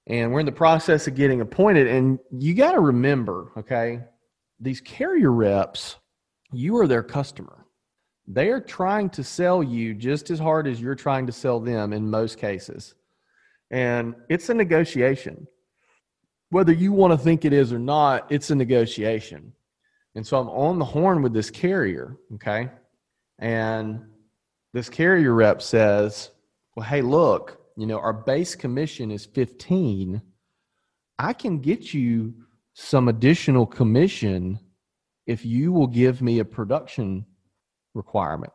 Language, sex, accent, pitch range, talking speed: English, male, American, 110-145 Hz, 150 wpm